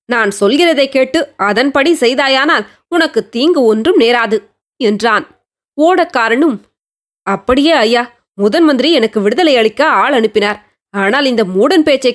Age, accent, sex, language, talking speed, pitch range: 20-39, native, female, Tamil, 115 wpm, 225-300 Hz